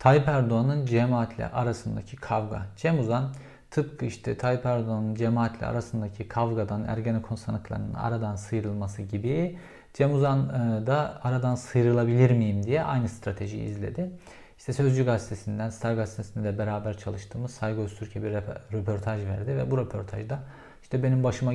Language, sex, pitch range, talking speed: Turkish, male, 110-130 Hz, 135 wpm